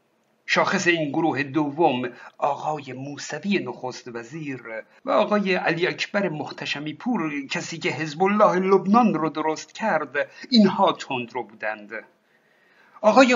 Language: Persian